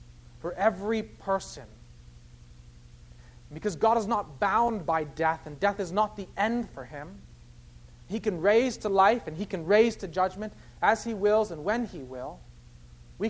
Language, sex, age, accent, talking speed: English, male, 30-49, American, 165 wpm